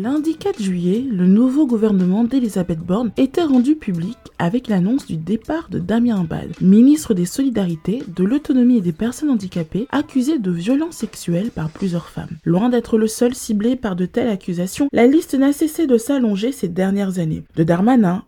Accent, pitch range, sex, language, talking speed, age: French, 185-265 Hz, female, French, 175 wpm, 20-39